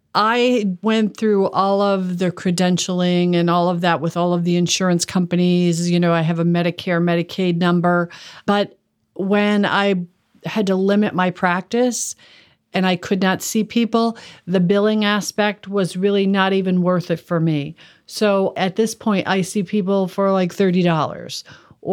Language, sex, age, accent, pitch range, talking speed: English, female, 50-69, American, 175-205 Hz, 165 wpm